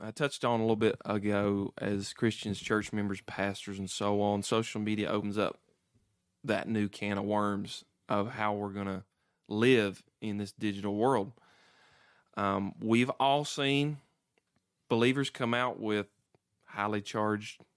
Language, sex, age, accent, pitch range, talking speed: English, male, 30-49, American, 100-115 Hz, 150 wpm